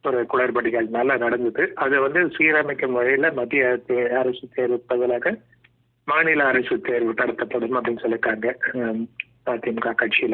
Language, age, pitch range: Tamil, 30-49, 120-130 Hz